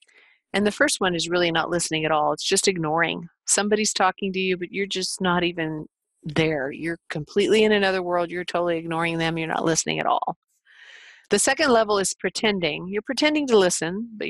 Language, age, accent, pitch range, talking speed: English, 40-59, American, 170-220 Hz, 195 wpm